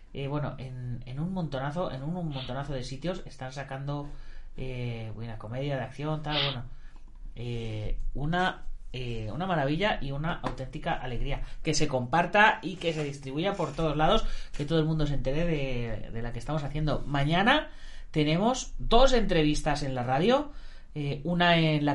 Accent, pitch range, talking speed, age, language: Spanish, 130-180 Hz, 170 wpm, 30-49, Spanish